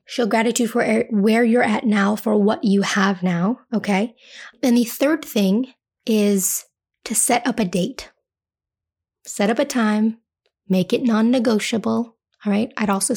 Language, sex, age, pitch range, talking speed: English, female, 20-39, 195-240 Hz, 155 wpm